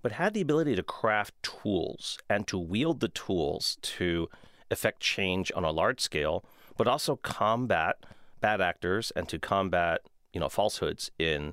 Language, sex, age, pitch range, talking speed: English, male, 40-59, 85-110 Hz, 160 wpm